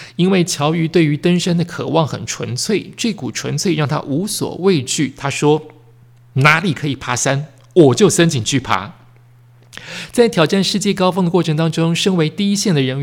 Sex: male